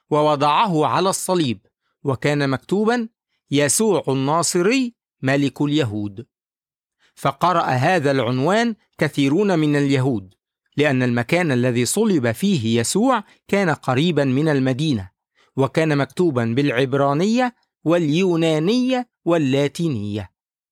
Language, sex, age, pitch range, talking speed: English, male, 50-69, 135-210 Hz, 85 wpm